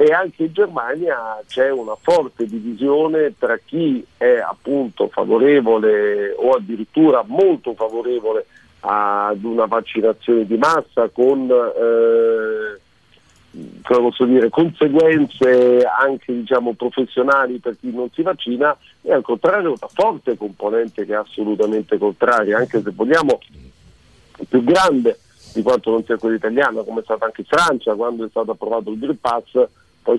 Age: 50-69